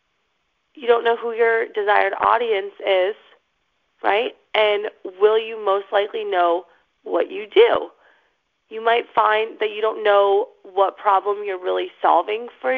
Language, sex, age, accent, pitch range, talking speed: English, female, 30-49, American, 210-335 Hz, 145 wpm